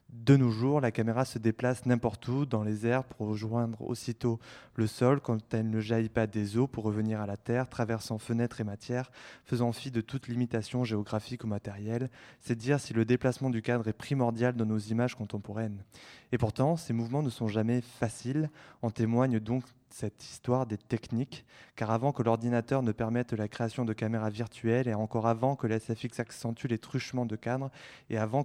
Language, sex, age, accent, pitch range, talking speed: French, male, 20-39, French, 110-130 Hz, 195 wpm